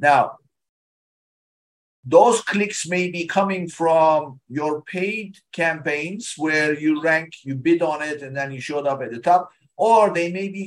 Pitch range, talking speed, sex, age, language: 160-190 Hz, 165 wpm, male, 50-69, English